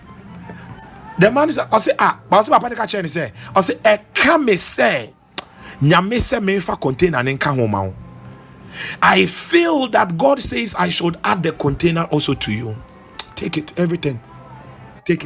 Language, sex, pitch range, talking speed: English, male, 110-180 Hz, 115 wpm